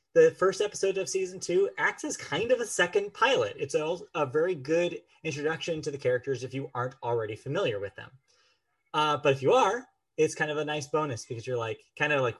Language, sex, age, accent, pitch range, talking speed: English, male, 20-39, American, 125-160 Hz, 220 wpm